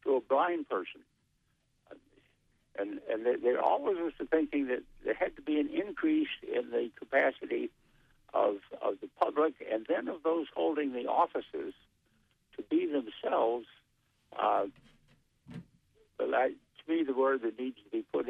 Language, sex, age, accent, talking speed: English, male, 60-79, American, 155 wpm